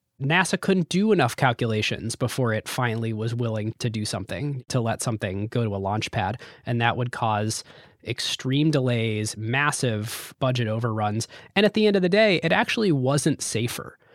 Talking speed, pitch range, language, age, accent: 175 wpm, 110-135 Hz, English, 20-39, American